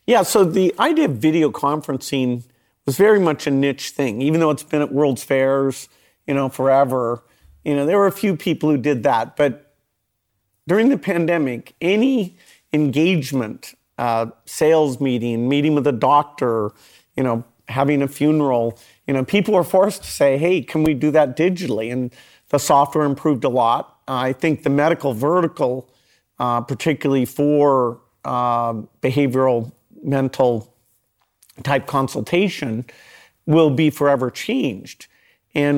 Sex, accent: male, American